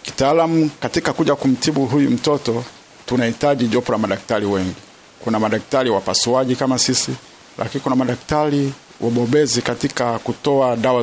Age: 50-69